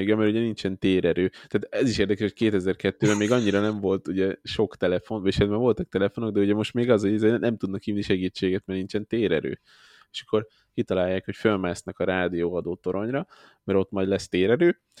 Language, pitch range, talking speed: Hungarian, 95-105 Hz, 190 wpm